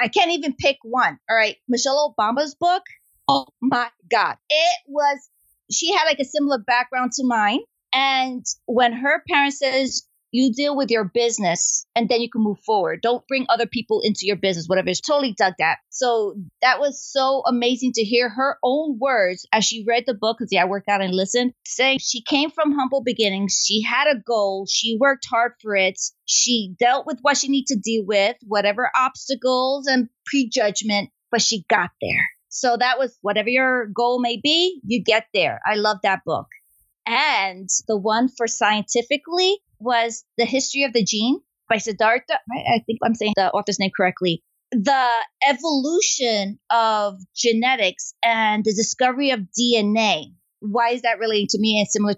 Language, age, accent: English, 30-49, American